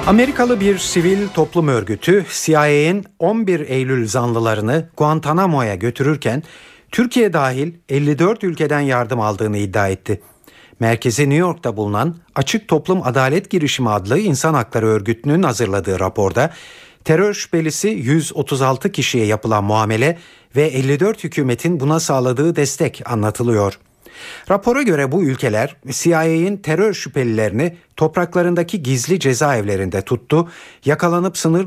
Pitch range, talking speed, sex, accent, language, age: 115-170 Hz, 110 wpm, male, native, Turkish, 50-69